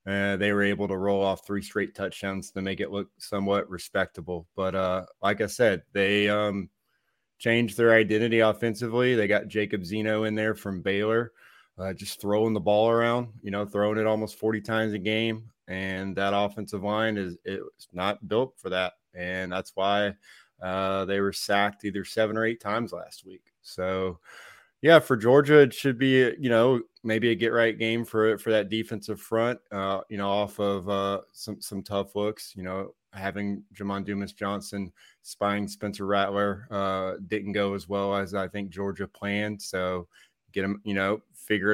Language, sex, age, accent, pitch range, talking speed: English, male, 20-39, American, 100-110 Hz, 185 wpm